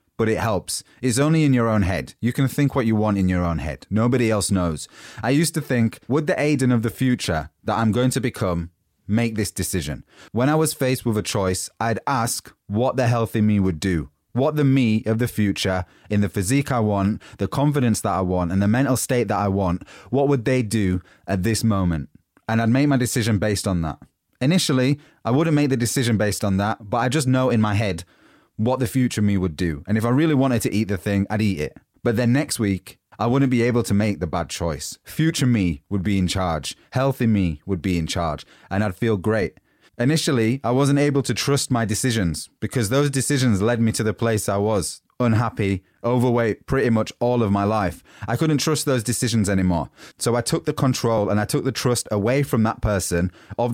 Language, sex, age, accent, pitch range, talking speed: English, male, 20-39, British, 100-130 Hz, 225 wpm